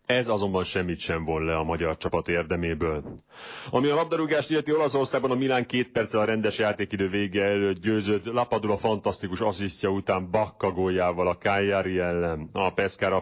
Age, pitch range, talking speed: 30-49, 90-110 Hz, 165 wpm